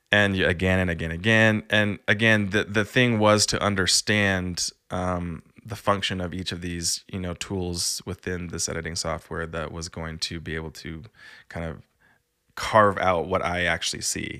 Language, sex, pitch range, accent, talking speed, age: English, male, 85-100 Hz, American, 180 wpm, 20-39